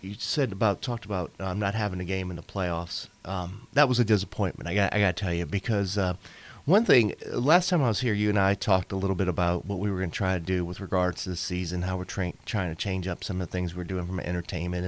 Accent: American